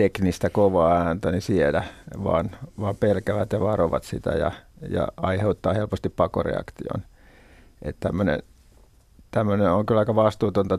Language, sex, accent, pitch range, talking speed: Finnish, male, native, 95-105 Hz, 115 wpm